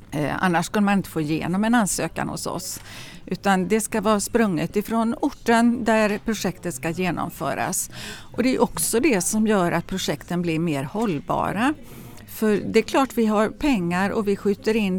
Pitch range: 170-215 Hz